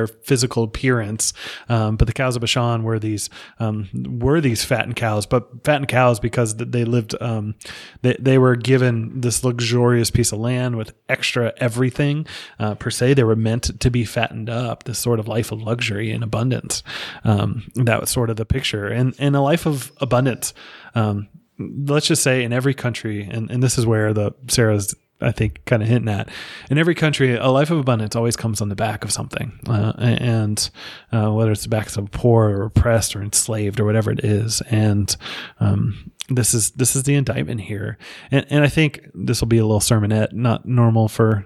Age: 30-49